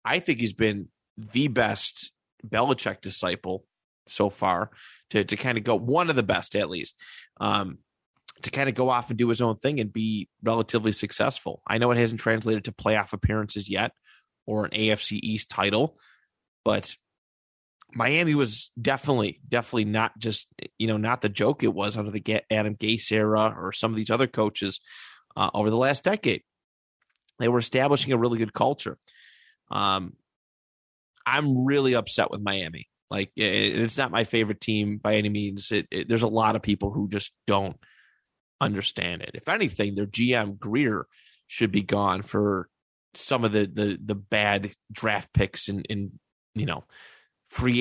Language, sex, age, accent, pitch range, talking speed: English, male, 30-49, American, 100-115 Hz, 175 wpm